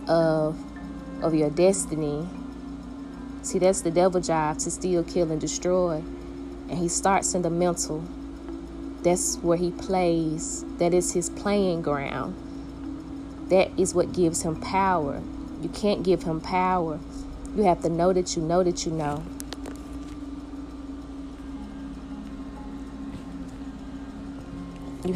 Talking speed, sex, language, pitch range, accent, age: 120 wpm, female, English, 160-215 Hz, American, 20-39